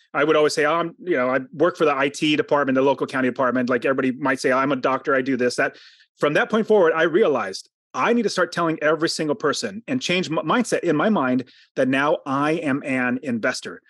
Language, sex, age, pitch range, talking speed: English, male, 30-49, 140-175 Hz, 240 wpm